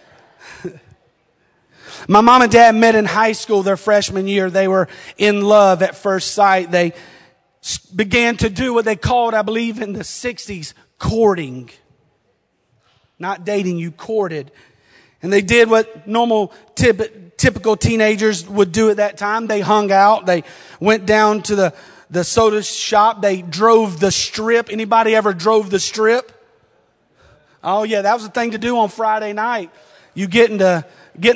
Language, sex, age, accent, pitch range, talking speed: English, male, 30-49, American, 195-225 Hz, 155 wpm